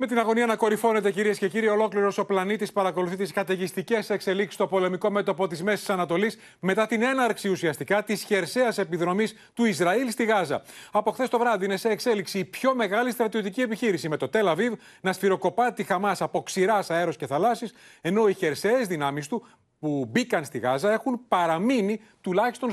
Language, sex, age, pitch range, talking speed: Greek, male, 30-49, 185-230 Hz, 180 wpm